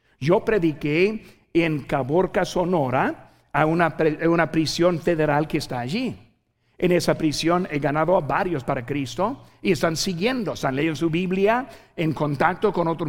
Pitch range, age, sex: 155-210 Hz, 60-79, male